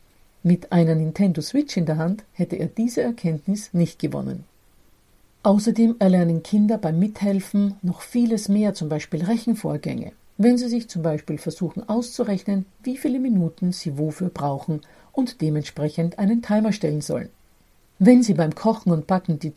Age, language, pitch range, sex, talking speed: 50-69, German, 155-210 Hz, female, 155 wpm